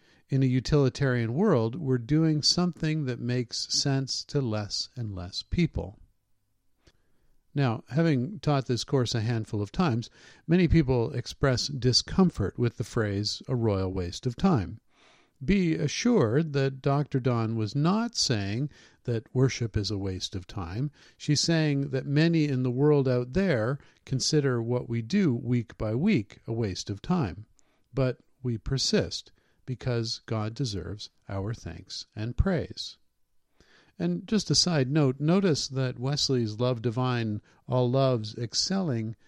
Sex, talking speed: male, 145 wpm